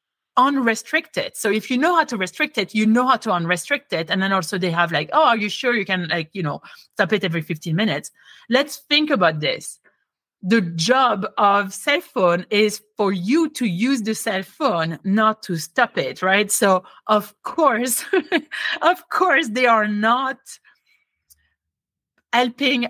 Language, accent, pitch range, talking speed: English, French, 170-225 Hz, 175 wpm